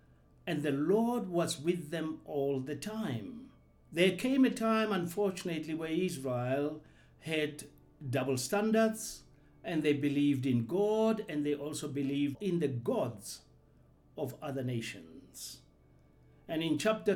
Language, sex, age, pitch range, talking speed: English, male, 60-79, 125-190 Hz, 130 wpm